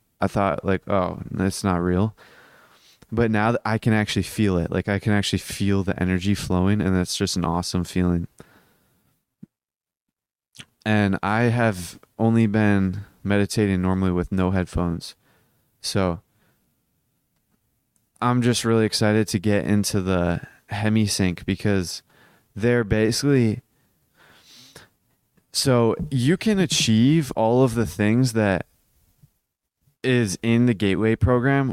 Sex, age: male, 20-39